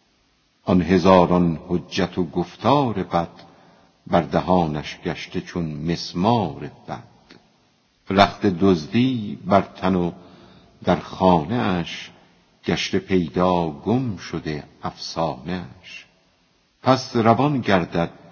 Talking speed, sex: 90 wpm, female